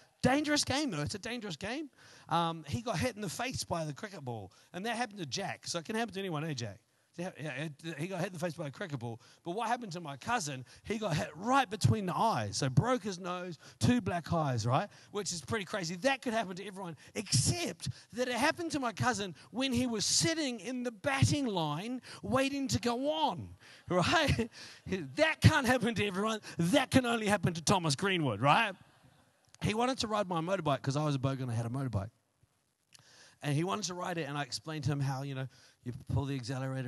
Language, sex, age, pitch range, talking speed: English, male, 40-59, 135-200 Hz, 225 wpm